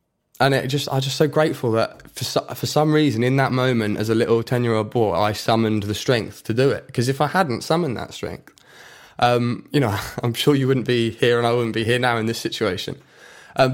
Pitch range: 115-145 Hz